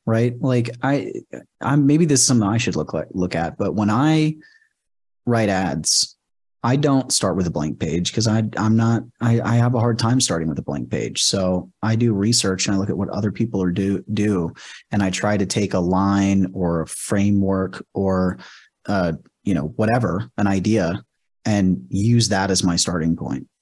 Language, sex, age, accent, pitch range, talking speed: English, male, 30-49, American, 90-115 Hz, 200 wpm